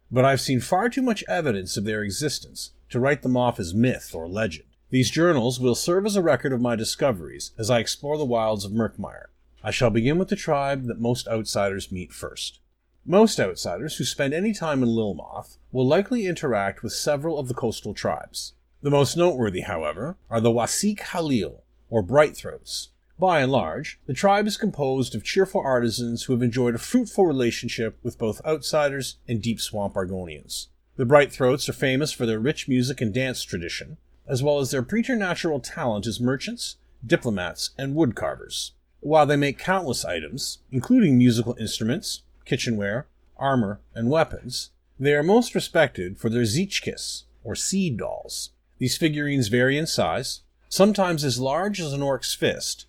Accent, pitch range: American, 115-155 Hz